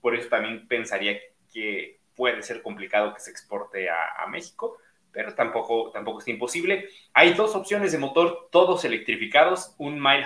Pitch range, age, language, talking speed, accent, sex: 115-170 Hz, 30-49, Spanish, 165 wpm, Mexican, male